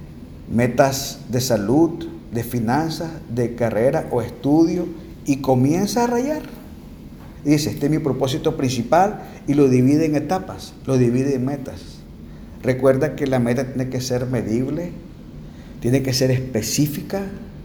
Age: 50-69